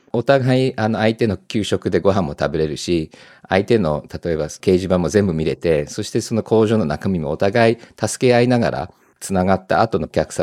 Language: Japanese